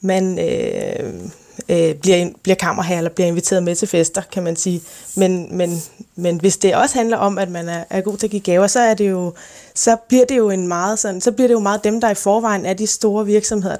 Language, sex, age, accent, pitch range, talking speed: Danish, female, 20-39, native, 180-220 Hz, 195 wpm